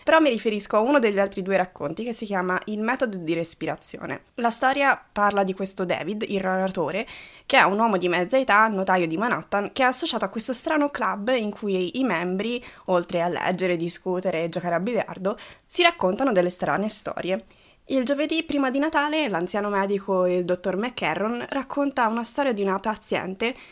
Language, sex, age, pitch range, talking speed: Italian, female, 20-39, 185-250 Hz, 185 wpm